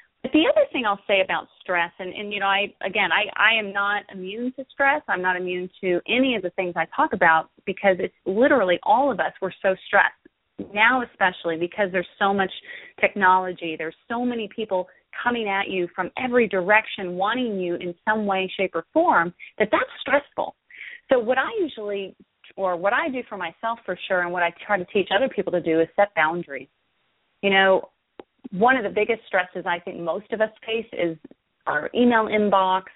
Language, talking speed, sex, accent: English, 200 wpm, female, American